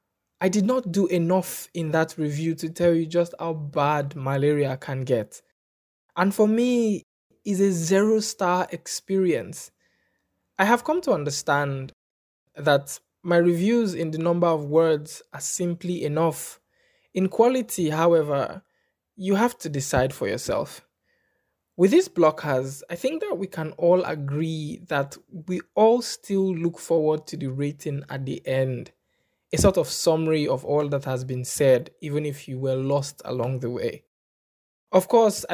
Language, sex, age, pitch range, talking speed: English, male, 20-39, 140-180 Hz, 155 wpm